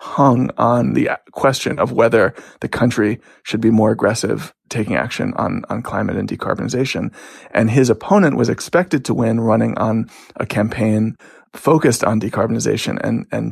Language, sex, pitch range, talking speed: English, male, 115-135 Hz, 155 wpm